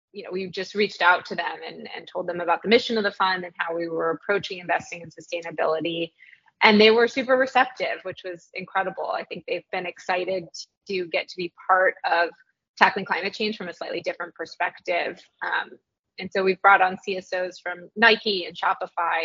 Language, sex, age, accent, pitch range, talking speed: English, female, 20-39, American, 175-210 Hz, 200 wpm